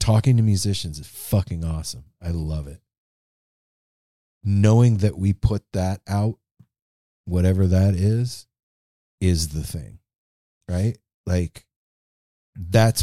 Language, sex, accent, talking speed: English, male, American, 110 wpm